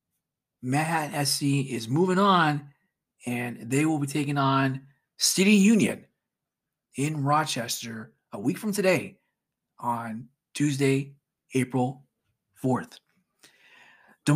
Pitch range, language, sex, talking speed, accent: 130-155 Hz, English, male, 100 wpm, American